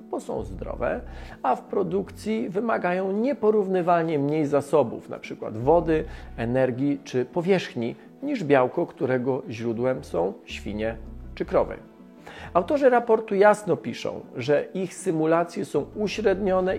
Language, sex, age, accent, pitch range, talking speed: Polish, male, 40-59, native, 145-205 Hz, 115 wpm